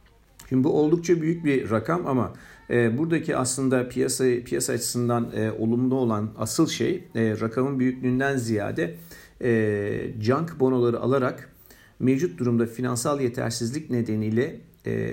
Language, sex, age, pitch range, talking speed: Turkish, male, 50-69, 115-135 Hz, 125 wpm